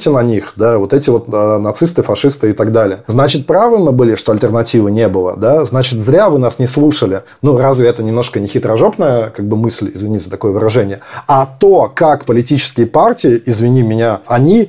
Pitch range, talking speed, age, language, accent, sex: 115-145 Hz, 195 wpm, 20-39, Russian, native, male